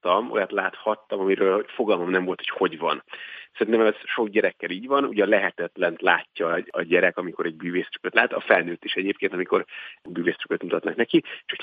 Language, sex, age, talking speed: Hungarian, male, 40-59, 175 wpm